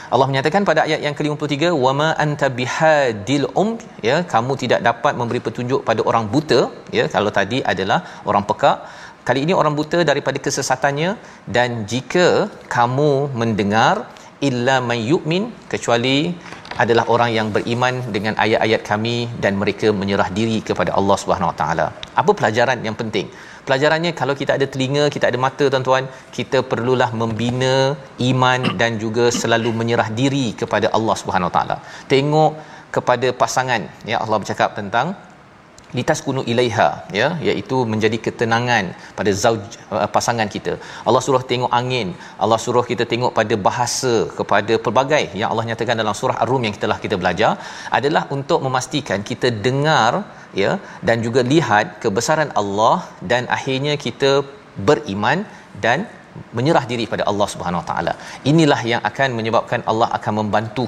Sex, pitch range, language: male, 115-140 Hz, Malayalam